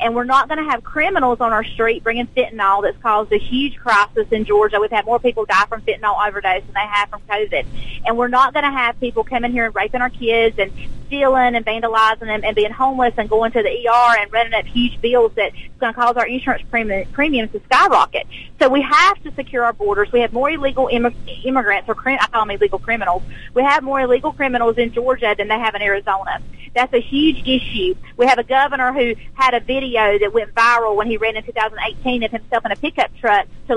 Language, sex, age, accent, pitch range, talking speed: English, female, 30-49, American, 220-270 Hz, 230 wpm